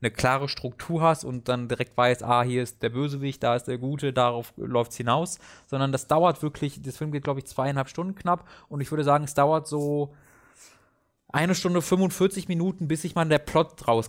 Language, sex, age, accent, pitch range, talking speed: German, male, 20-39, German, 120-160 Hz, 215 wpm